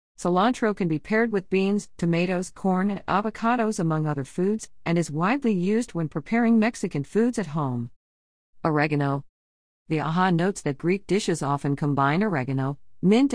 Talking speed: 155 wpm